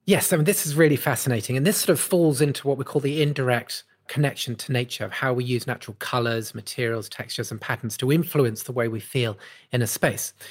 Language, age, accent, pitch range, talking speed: English, 40-59, British, 125-160 Hz, 230 wpm